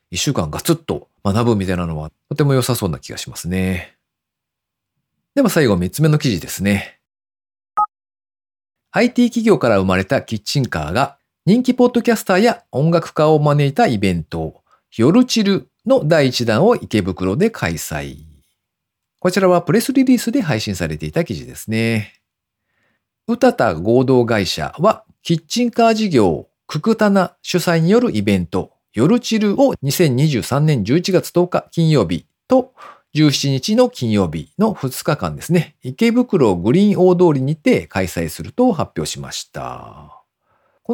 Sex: male